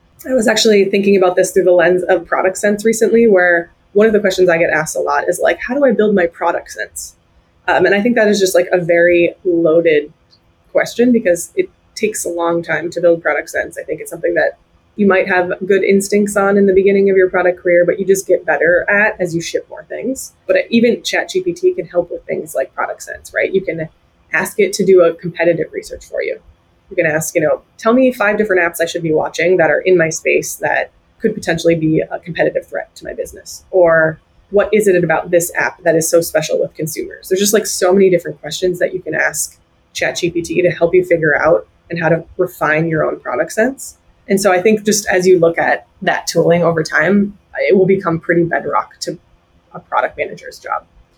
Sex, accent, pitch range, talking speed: female, American, 170-215 Hz, 230 wpm